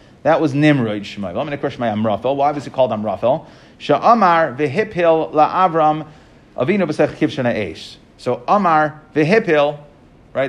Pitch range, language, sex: 120-155 Hz, English, male